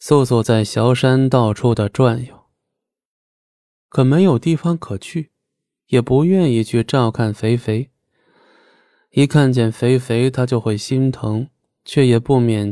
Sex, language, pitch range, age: male, Chinese, 115-145 Hz, 20-39